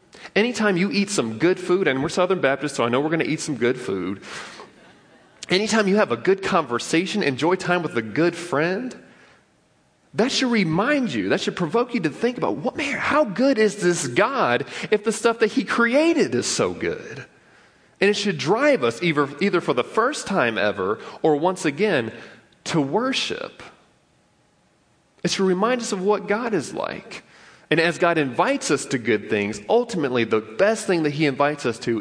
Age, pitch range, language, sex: 30-49, 150-225 Hz, English, male